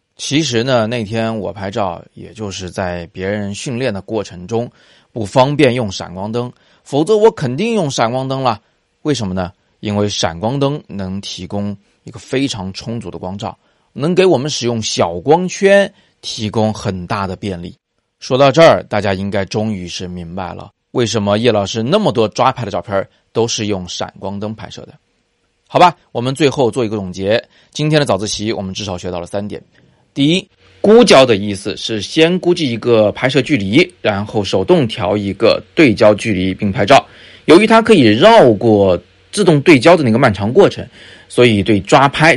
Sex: male